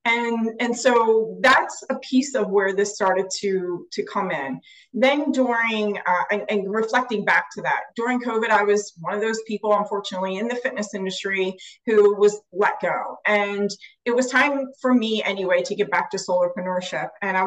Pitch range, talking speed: 205-260 Hz, 185 wpm